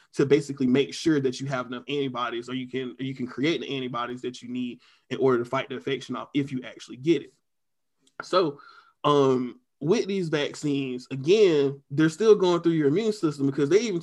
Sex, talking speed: male, 210 wpm